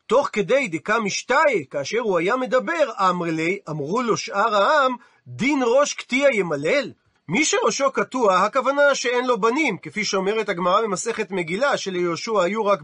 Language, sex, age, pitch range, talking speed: Hebrew, male, 40-59, 195-270 Hz, 155 wpm